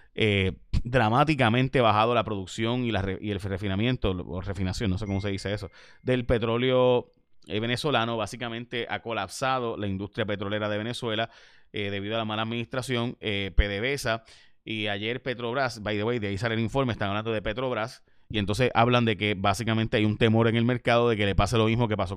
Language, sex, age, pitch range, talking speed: Spanish, male, 30-49, 105-125 Hz, 195 wpm